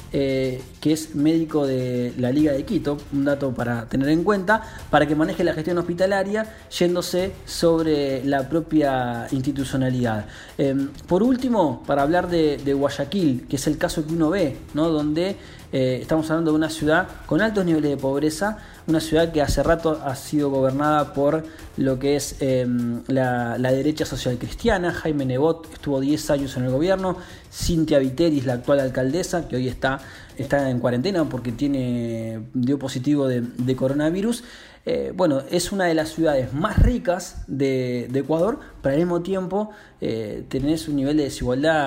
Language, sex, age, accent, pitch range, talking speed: Spanish, male, 20-39, Argentinian, 130-165 Hz, 170 wpm